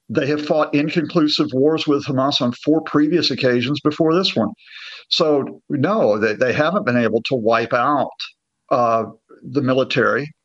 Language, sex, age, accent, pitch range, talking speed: English, male, 50-69, American, 130-155 Hz, 155 wpm